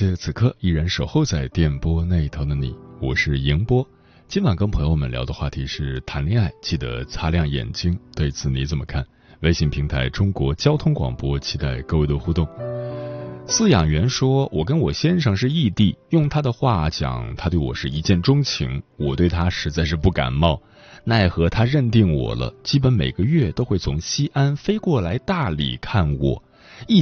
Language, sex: Chinese, male